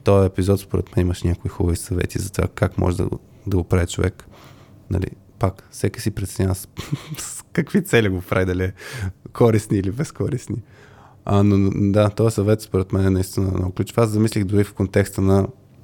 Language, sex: Bulgarian, male